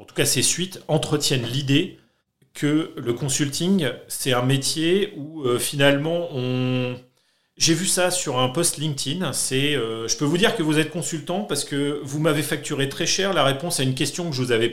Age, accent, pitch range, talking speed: 40-59, French, 125-165 Hz, 205 wpm